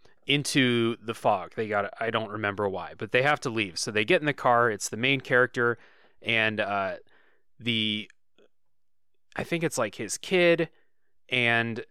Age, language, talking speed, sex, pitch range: 20-39, English, 170 wpm, male, 105-130 Hz